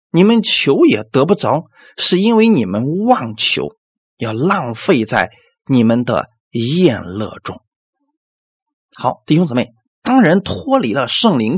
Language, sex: Chinese, male